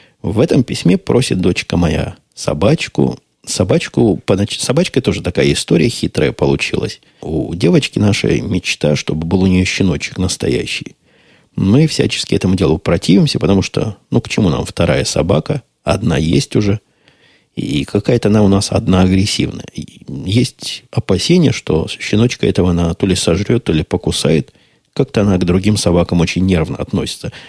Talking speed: 145 wpm